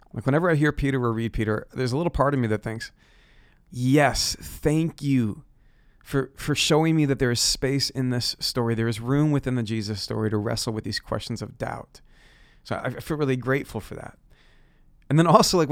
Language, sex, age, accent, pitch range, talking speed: English, male, 30-49, American, 115-150 Hz, 210 wpm